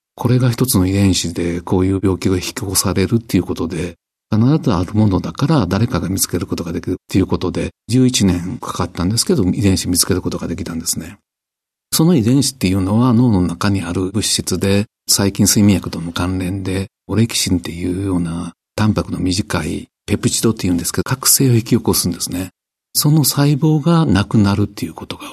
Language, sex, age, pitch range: Japanese, male, 50-69, 90-125 Hz